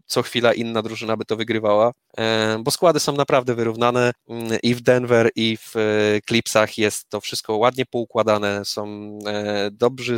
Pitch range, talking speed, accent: 110-125 Hz, 145 wpm, native